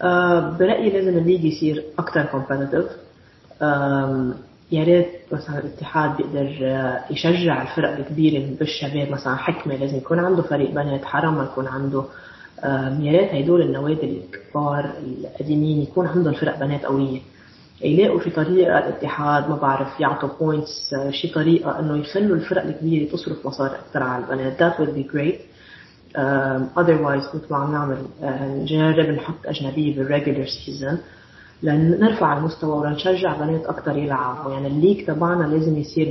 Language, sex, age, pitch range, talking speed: Arabic, female, 30-49, 140-160 Hz, 135 wpm